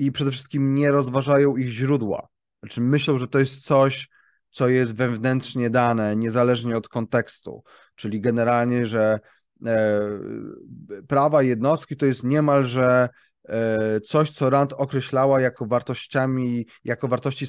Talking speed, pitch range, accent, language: 130 wpm, 120-145 Hz, native, Polish